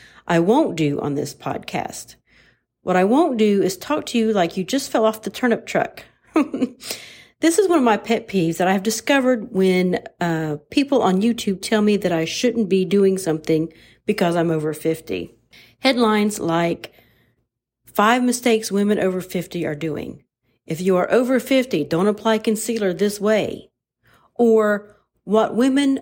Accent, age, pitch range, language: American, 40-59, 170-225 Hz, English